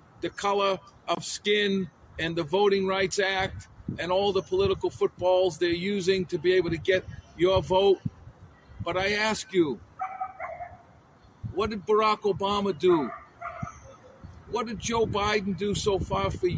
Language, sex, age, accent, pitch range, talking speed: English, male, 50-69, American, 175-210 Hz, 145 wpm